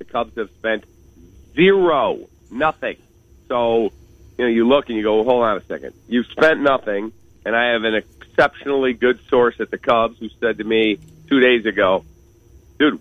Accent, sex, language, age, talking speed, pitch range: American, male, English, 50-69, 180 wpm, 105-130 Hz